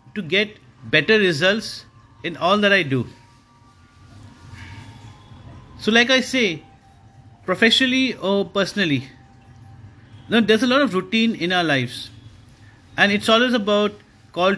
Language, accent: English, Indian